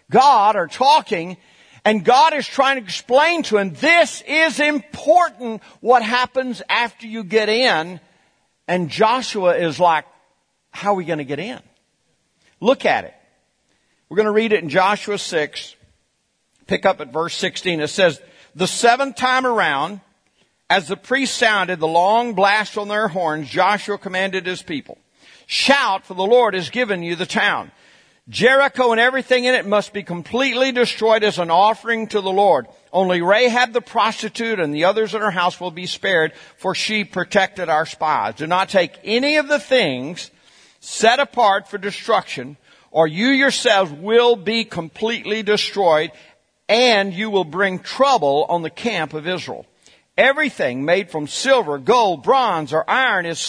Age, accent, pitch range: 50-69, American, 180-240 Hz